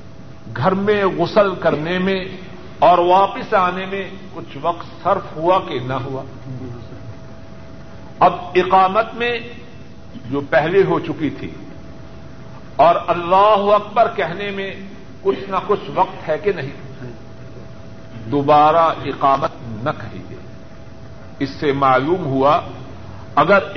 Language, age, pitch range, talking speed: Urdu, 50-69, 120-185 Hz, 115 wpm